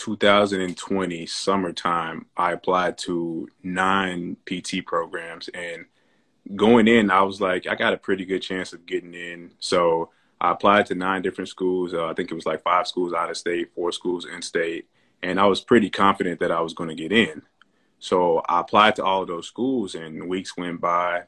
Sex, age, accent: male, 20-39, American